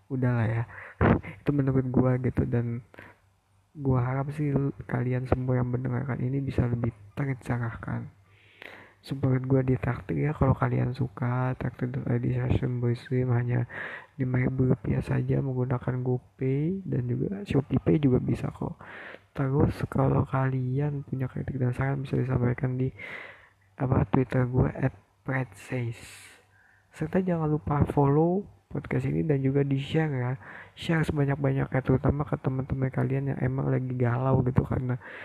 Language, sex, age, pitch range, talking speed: Indonesian, male, 20-39, 120-140 Hz, 140 wpm